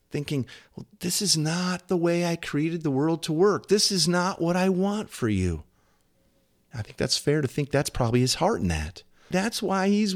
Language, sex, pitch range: English, male, 95-155 Hz